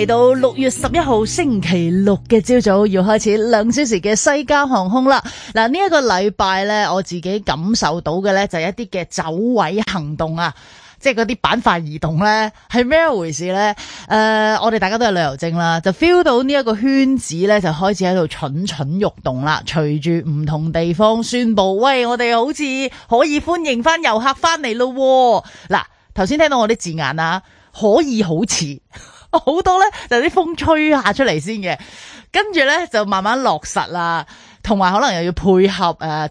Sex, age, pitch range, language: female, 30-49, 170-250 Hz, Chinese